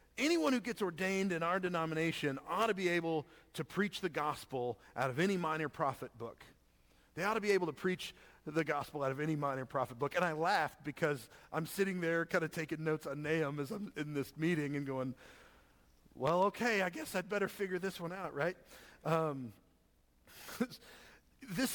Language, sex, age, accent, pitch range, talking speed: English, male, 40-59, American, 135-180 Hz, 190 wpm